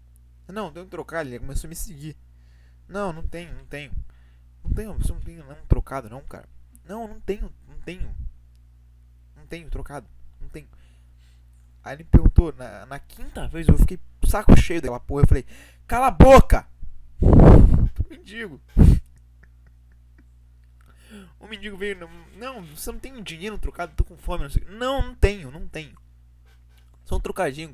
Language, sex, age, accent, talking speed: Portuguese, male, 20-39, Brazilian, 170 wpm